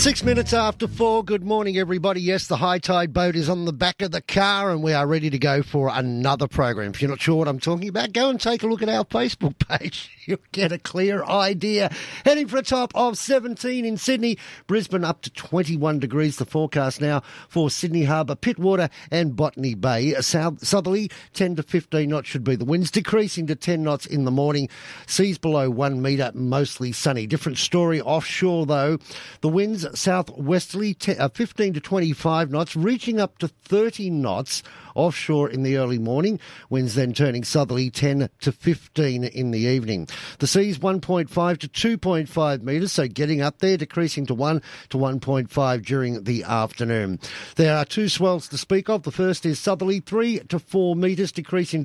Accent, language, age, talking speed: Australian, English, 50-69, 190 wpm